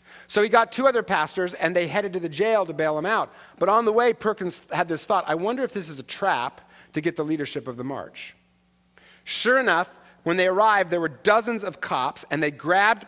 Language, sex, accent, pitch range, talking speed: English, male, American, 140-195 Hz, 235 wpm